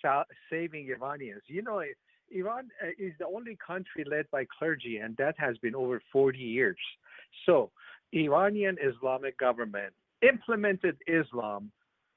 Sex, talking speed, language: male, 125 wpm, English